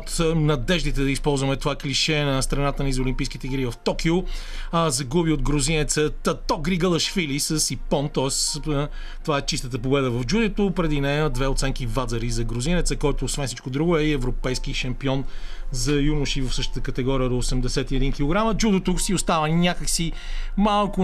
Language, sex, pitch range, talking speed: Bulgarian, male, 135-165 Hz, 160 wpm